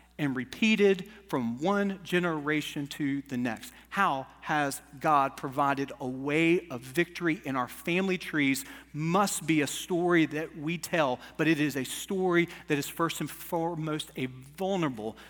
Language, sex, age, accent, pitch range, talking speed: English, male, 40-59, American, 140-185 Hz, 155 wpm